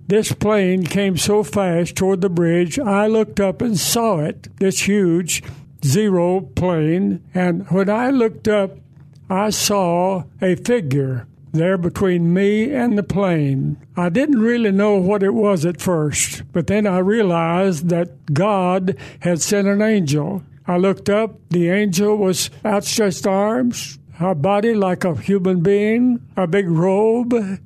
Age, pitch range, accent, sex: 60-79, 170-205 Hz, American, male